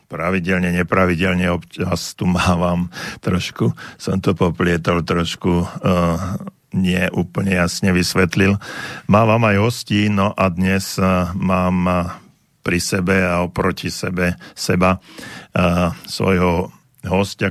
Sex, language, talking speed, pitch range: male, Slovak, 110 wpm, 90-95 Hz